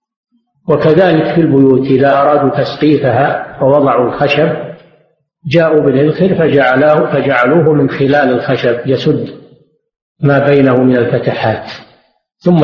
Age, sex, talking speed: 50-69, male, 95 wpm